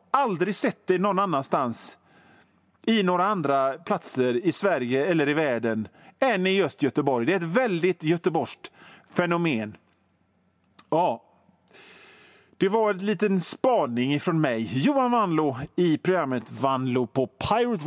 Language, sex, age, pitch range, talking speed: Swedish, male, 40-59, 135-195 Hz, 130 wpm